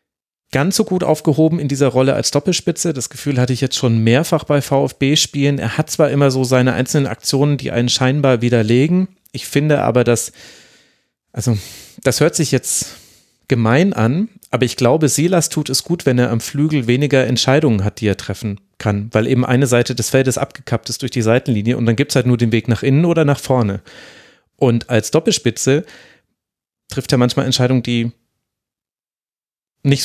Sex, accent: male, German